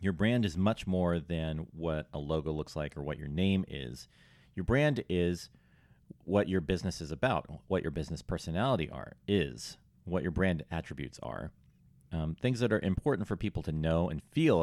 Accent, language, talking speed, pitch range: American, English, 190 wpm, 80-95 Hz